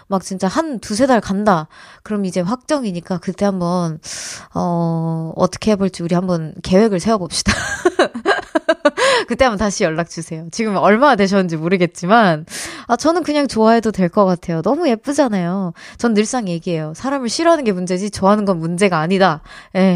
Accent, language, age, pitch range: native, Korean, 20-39, 190-275 Hz